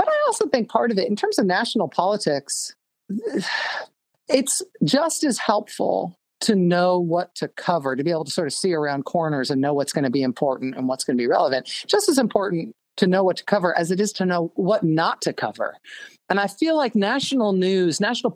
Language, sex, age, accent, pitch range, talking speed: English, male, 40-59, American, 155-220 Hz, 210 wpm